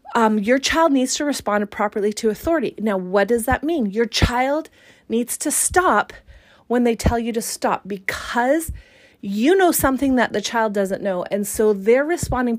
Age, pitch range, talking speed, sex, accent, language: 30-49, 210-280 Hz, 180 wpm, female, American, English